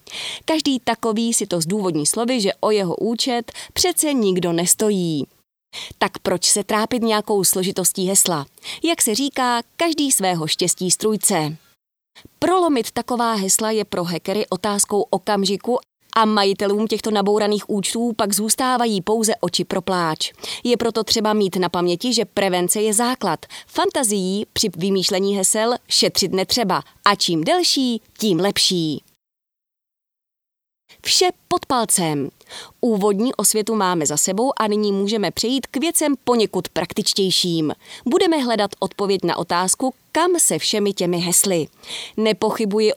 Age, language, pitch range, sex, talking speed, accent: 30-49, Czech, 190-235 Hz, female, 130 wpm, native